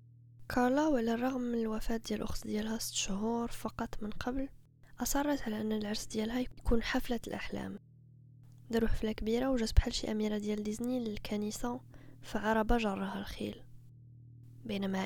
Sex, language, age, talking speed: female, Arabic, 20-39, 130 wpm